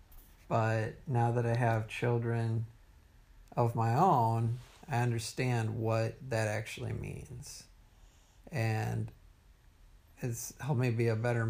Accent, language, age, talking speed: American, English, 50-69, 115 wpm